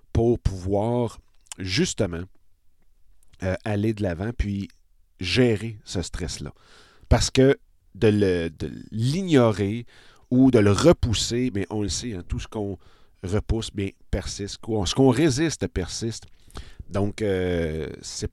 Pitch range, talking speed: 90-120 Hz, 120 wpm